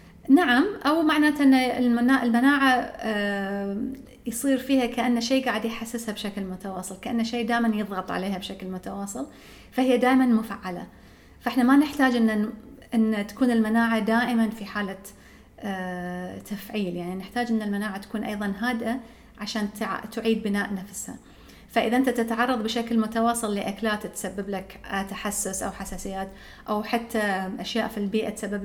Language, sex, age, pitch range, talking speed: English, female, 30-49, 200-240 Hz, 130 wpm